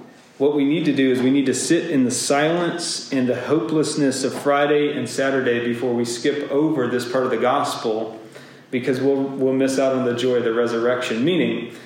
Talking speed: 205 wpm